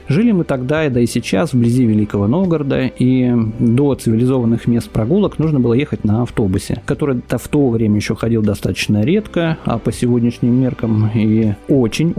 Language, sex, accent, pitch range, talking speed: Russian, male, native, 110-140 Hz, 170 wpm